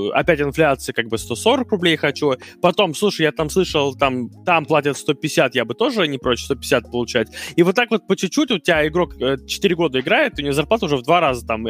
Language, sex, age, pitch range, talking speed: Russian, male, 20-39, 120-175 Hz, 220 wpm